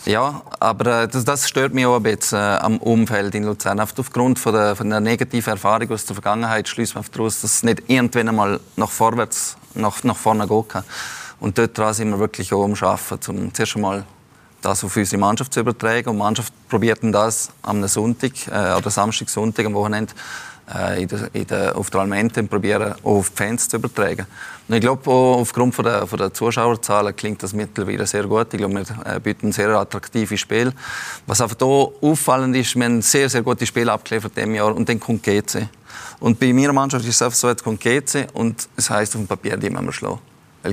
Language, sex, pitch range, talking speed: German, male, 105-120 Hz, 205 wpm